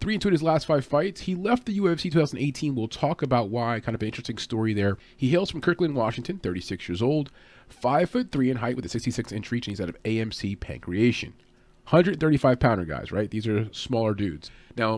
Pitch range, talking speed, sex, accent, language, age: 100-140 Hz, 225 wpm, male, American, English, 30-49